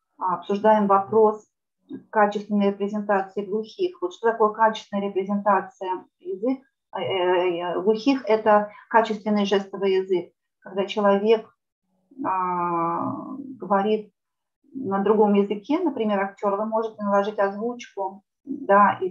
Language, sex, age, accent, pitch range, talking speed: Russian, female, 30-49, native, 185-215 Hz, 95 wpm